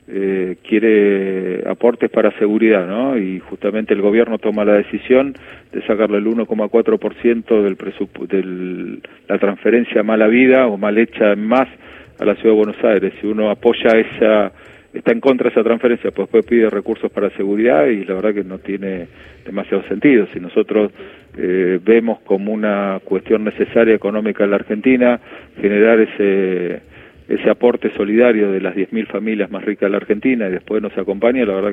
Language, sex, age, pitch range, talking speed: Spanish, male, 40-59, 95-110 Hz, 170 wpm